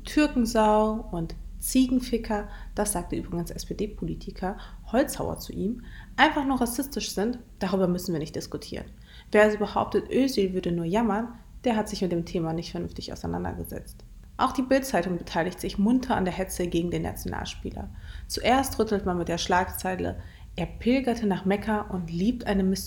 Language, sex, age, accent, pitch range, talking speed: German, female, 30-49, German, 170-230 Hz, 160 wpm